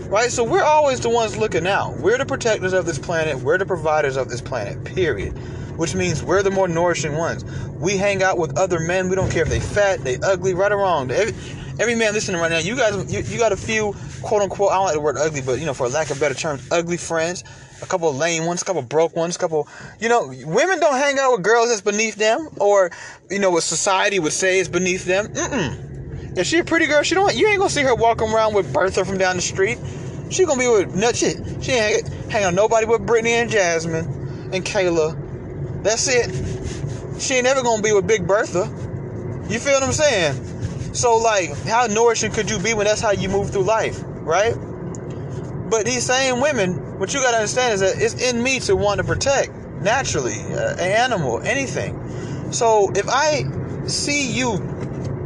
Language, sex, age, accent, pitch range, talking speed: English, male, 30-49, American, 160-225 Hz, 220 wpm